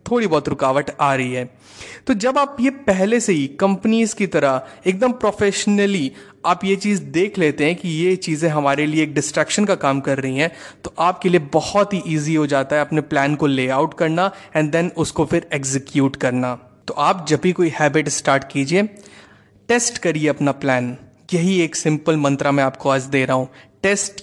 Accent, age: native, 30-49